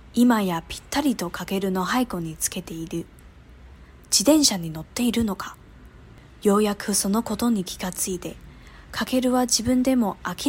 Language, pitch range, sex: Chinese, 170-230 Hz, female